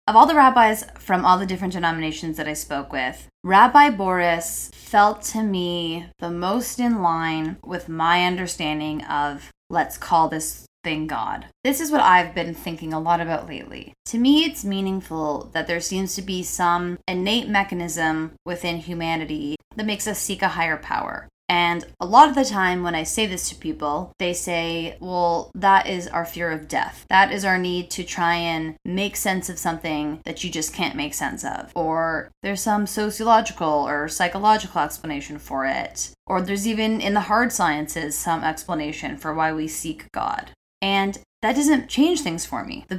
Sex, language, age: female, English, 20-39